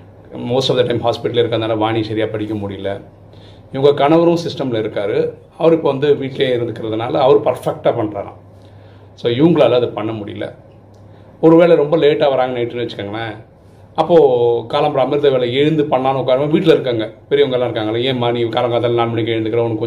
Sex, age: male, 40-59